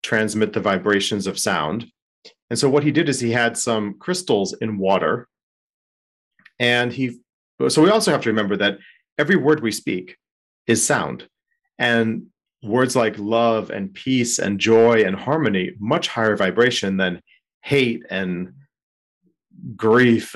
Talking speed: 145 wpm